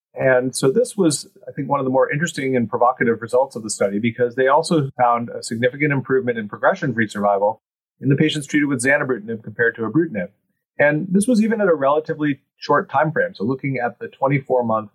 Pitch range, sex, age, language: 115-145 Hz, male, 30-49, English